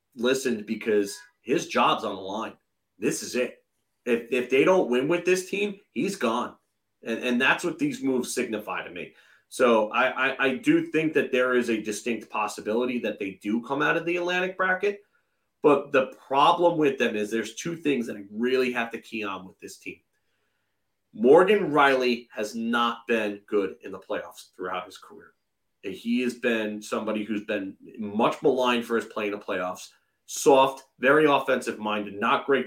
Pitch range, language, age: 105-140 Hz, English, 30-49